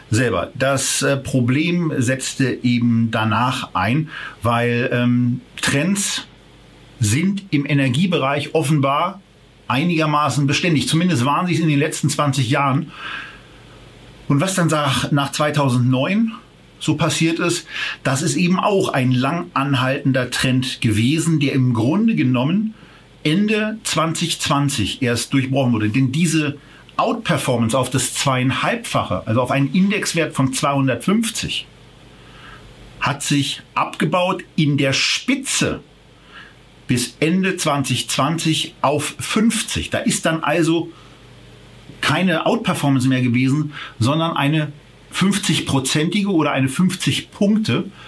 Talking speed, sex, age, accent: 115 wpm, male, 40-59, German